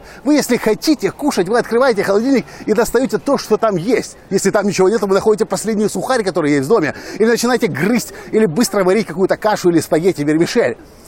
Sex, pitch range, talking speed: male, 160-215 Hz, 195 wpm